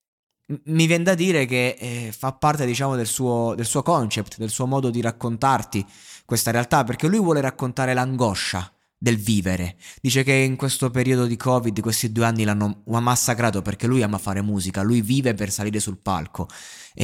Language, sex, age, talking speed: Italian, male, 20-39, 185 wpm